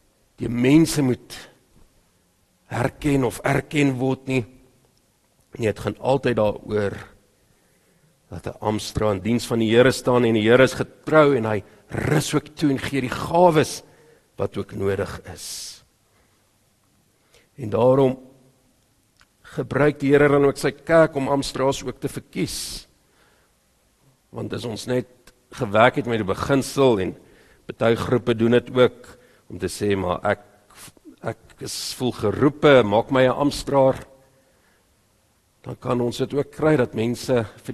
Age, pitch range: 50-69, 105-135 Hz